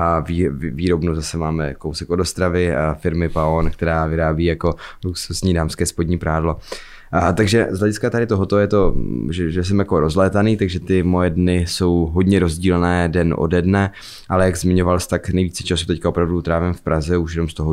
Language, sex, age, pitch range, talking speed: Czech, male, 20-39, 80-90 Hz, 190 wpm